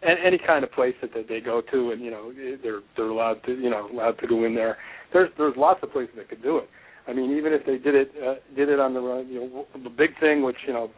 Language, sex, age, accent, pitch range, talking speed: English, male, 40-59, American, 120-150 Hz, 285 wpm